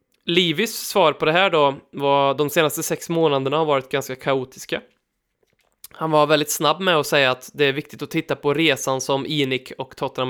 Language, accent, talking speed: Swedish, native, 200 wpm